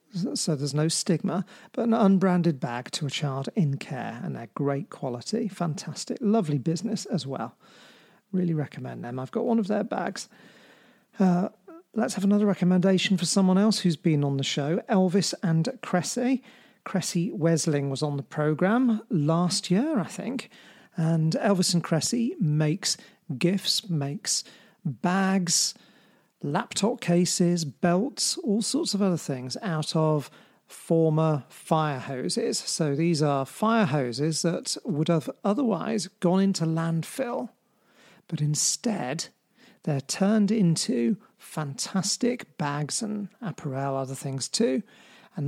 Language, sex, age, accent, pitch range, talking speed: English, male, 40-59, British, 155-210 Hz, 135 wpm